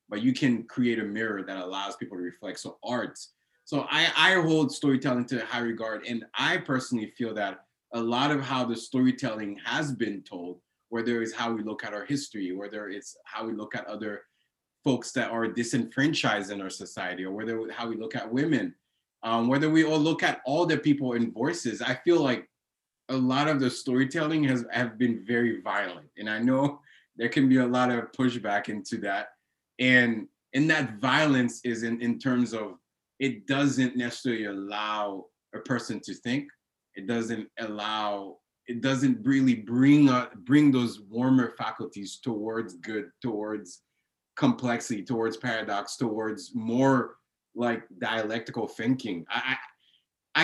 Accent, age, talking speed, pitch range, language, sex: American, 20-39, 170 wpm, 110-135 Hz, English, male